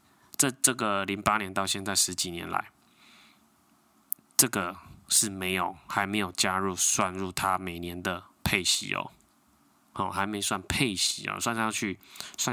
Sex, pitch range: male, 90-105 Hz